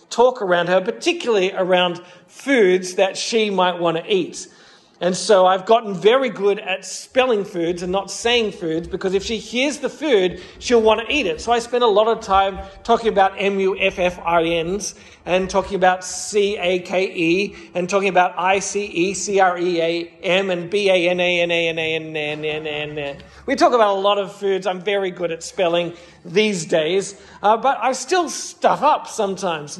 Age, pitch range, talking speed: 40-59, 180-235 Hz, 155 wpm